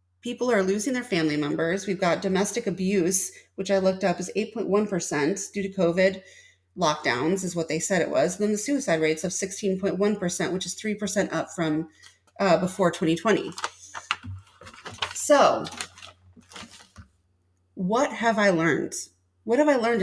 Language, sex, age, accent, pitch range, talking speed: English, female, 30-49, American, 150-195 Hz, 145 wpm